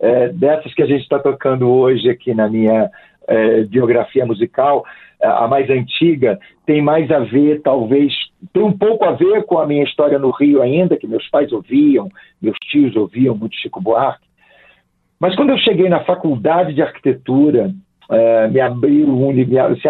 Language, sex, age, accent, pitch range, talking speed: Portuguese, male, 50-69, Brazilian, 130-165 Hz, 155 wpm